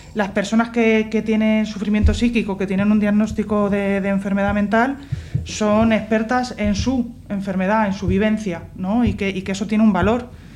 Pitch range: 185-220 Hz